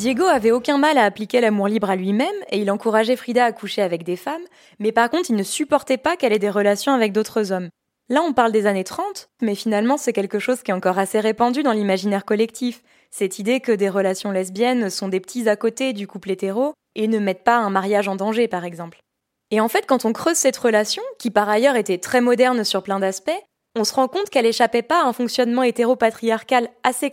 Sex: female